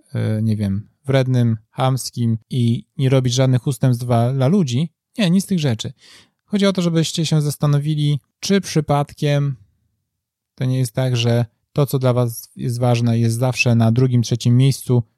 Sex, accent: male, native